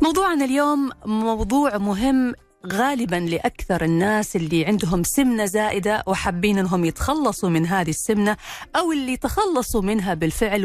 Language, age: Arabic, 40-59